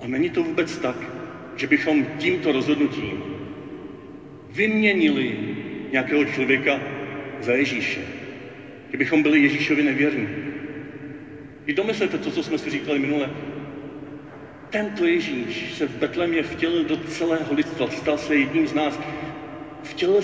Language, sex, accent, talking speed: Czech, male, native, 120 wpm